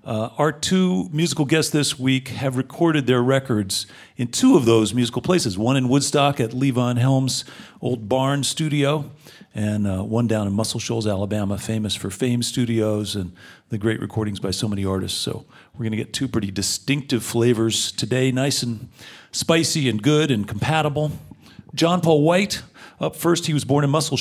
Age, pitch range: 40-59, 110-145 Hz